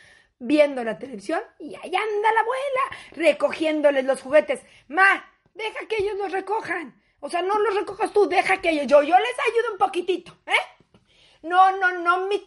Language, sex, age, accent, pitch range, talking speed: Spanish, female, 40-59, Mexican, 300-390 Hz, 180 wpm